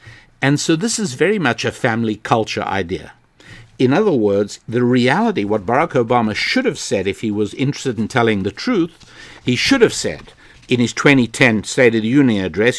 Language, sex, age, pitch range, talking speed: English, male, 60-79, 110-140 Hz, 190 wpm